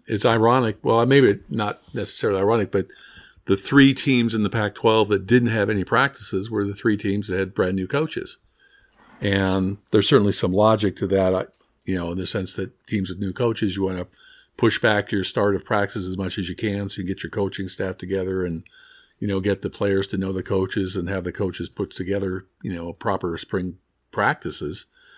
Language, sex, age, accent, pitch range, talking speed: English, male, 50-69, American, 95-115 Hz, 205 wpm